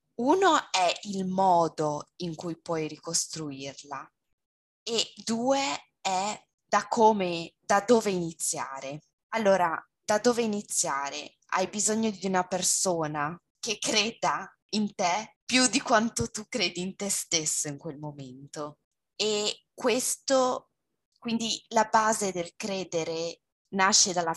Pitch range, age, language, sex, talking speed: 165-220 Hz, 20-39, Italian, female, 120 wpm